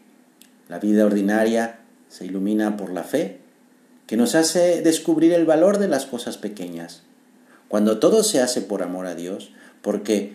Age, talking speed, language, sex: 50-69, 155 wpm, Spanish, male